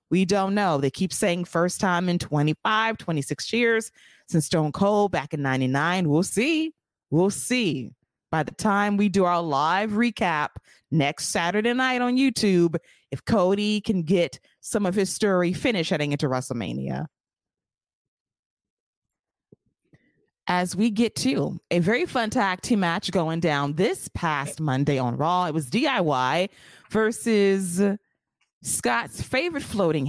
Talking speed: 140 wpm